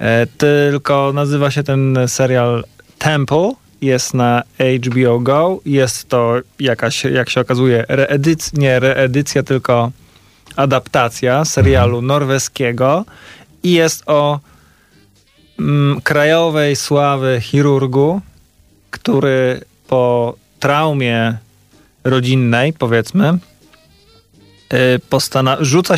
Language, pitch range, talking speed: Polish, 125-145 Hz, 85 wpm